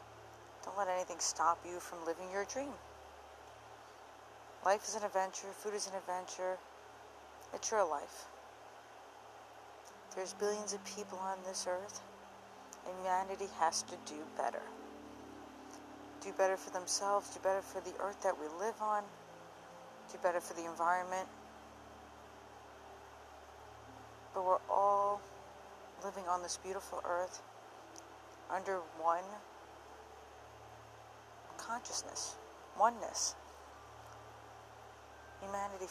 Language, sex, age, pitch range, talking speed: English, female, 50-69, 175-195 Hz, 105 wpm